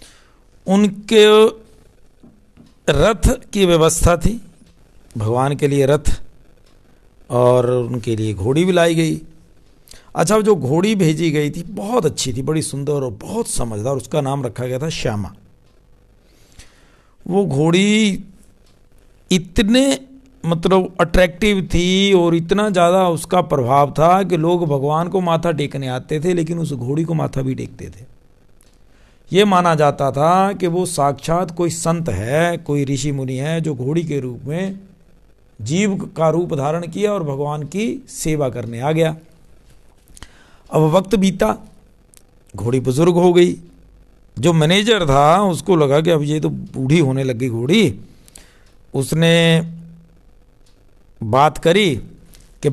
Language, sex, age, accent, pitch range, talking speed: Hindi, male, 60-79, native, 135-180 Hz, 135 wpm